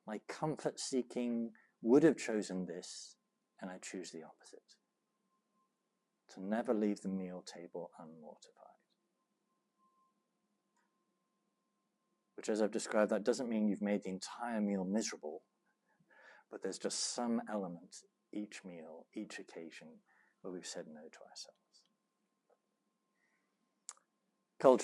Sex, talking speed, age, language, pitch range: male, 115 wpm, 60-79, English, 100-140 Hz